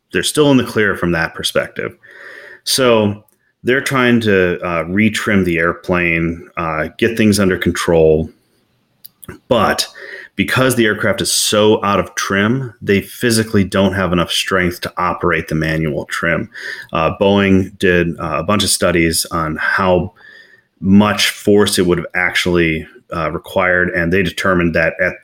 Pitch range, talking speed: 85-105 Hz, 150 wpm